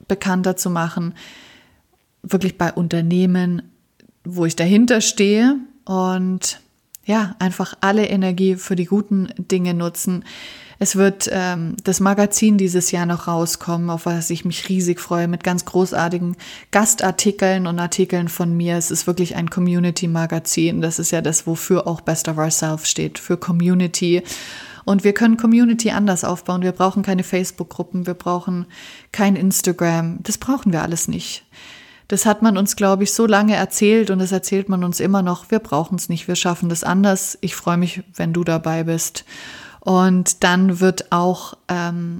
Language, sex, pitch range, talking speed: German, female, 175-195 Hz, 165 wpm